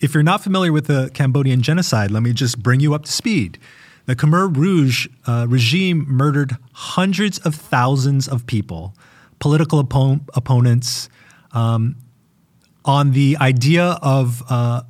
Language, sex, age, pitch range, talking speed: English, male, 30-49, 125-165 Hz, 140 wpm